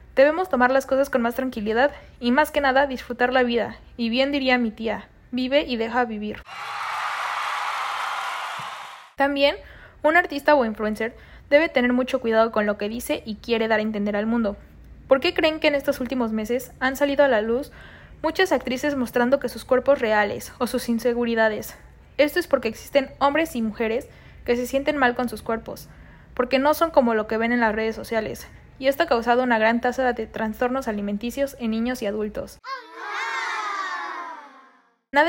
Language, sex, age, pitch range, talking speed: Spanish, female, 20-39, 230-280 Hz, 180 wpm